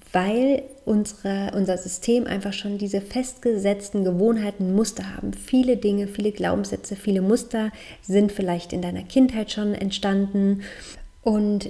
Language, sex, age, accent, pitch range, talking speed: German, female, 30-49, German, 195-230 Hz, 125 wpm